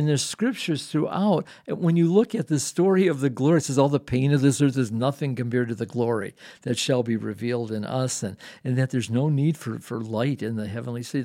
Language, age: English, 50-69